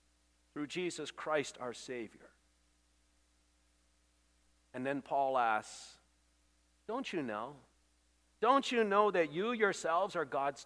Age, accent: 50-69, American